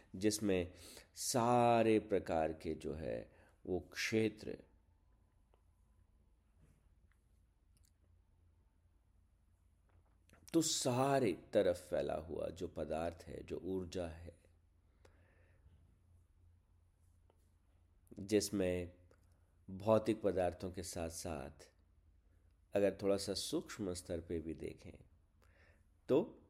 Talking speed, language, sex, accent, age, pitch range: 75 wpm, Hindi, male, native, 50-69, 85-95 Hz